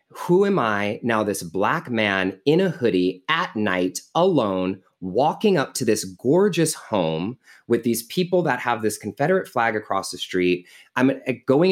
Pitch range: 110-155 Hz